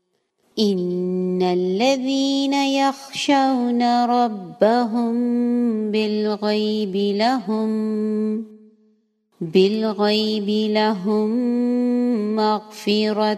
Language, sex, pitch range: English, female, 190-235 Hz